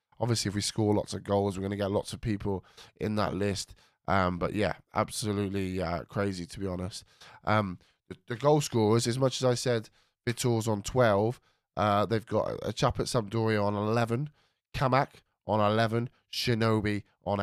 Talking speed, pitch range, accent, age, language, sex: 180 wpm, 100-120 Hz, British, 20-39, English, male